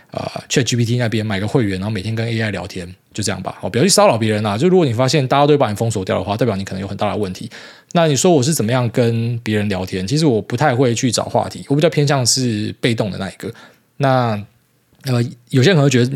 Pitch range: 110-145 Hz